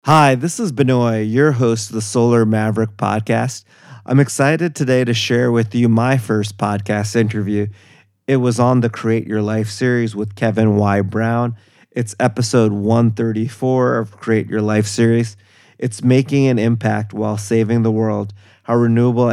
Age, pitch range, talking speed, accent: 30-49, 105-120 Hz, 160 wpm, American